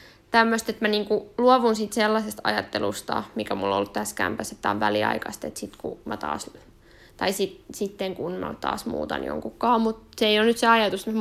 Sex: female